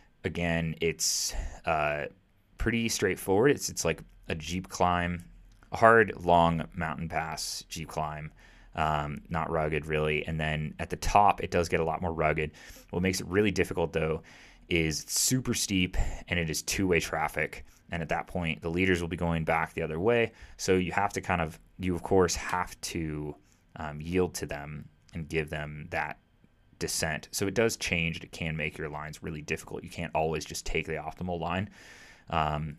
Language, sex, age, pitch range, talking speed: English, male, 20-39, 80-90 Hz, 185 wpm